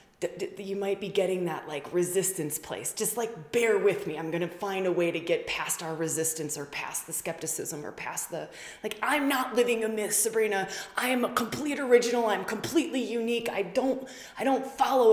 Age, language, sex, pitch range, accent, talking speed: 20-39, English, female, 170-235 Hz, American, 200 wpm